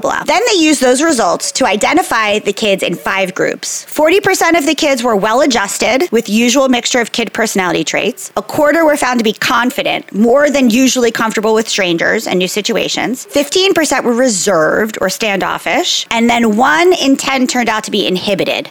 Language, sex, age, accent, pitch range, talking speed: English, female, 30-49, American, 190-270 Hz, 180 wpm